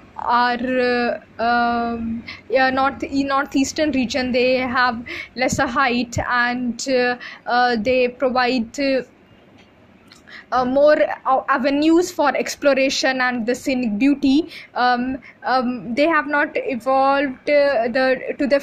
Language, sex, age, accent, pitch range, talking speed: English, female, 20-39, Indian, 245-275 Hz, 120 wpm